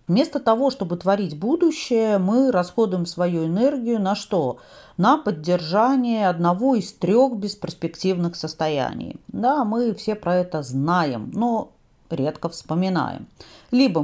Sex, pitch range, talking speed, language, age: female, 165-235 Hz, 120 wpm, Russian, 40-59